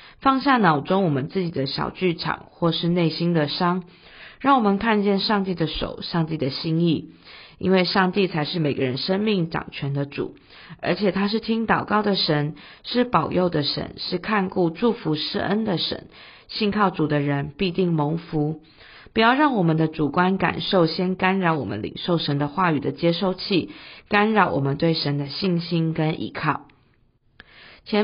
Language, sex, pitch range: Chinese, female, 155-200 Hz